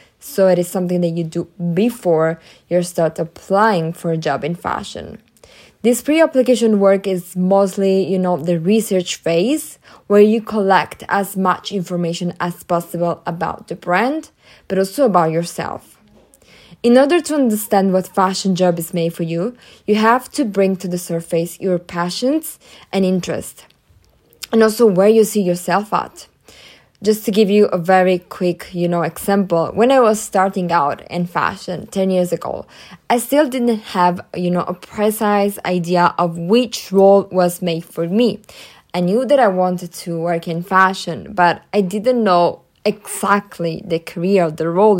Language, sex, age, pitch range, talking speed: English, female, 20-39, 175-210 Hz, 165 wpm